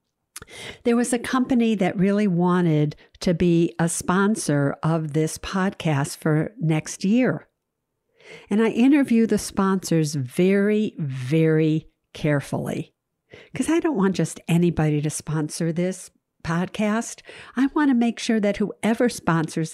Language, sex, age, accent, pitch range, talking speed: English, female, 60-79, American, 155-215 Hz, 130 wpm